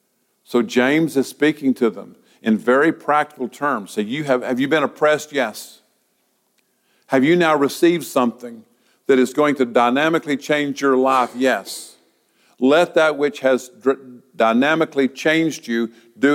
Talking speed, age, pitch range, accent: 145 wpm, 50-69, 130-185 Hz, American